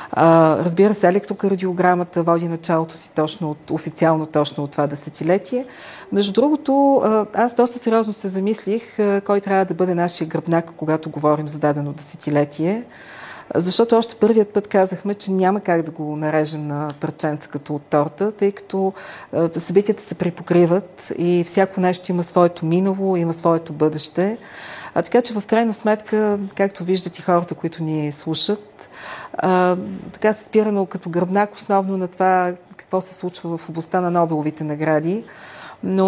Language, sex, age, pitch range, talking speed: Bulgarian, female, 40-59, 160-195 Hz, 150 wpm